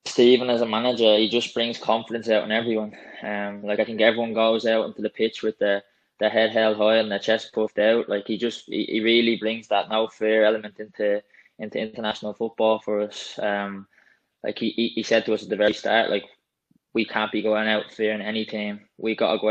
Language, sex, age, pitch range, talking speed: English, male, 20-39, 105-115 Hz, 225 wpm